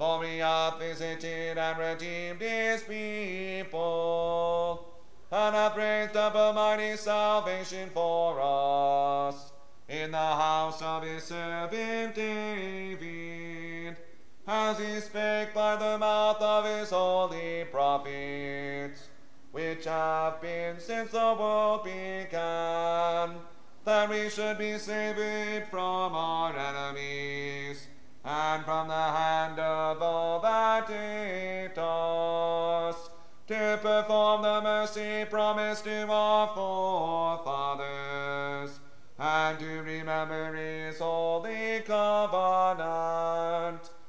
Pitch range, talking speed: 160-210 Hz, 100 wpm